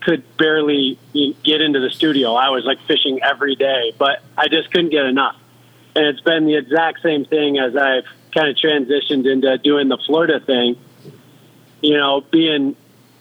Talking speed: 175 wpm